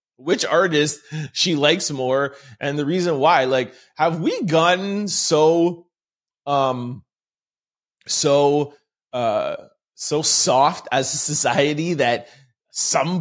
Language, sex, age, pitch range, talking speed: English, male, 20-39, 130-170 Hz, 110 wpm